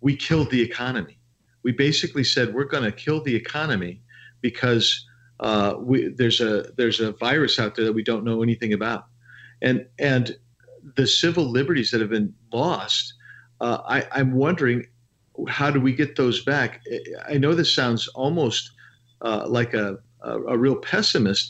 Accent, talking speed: American, 165 wpm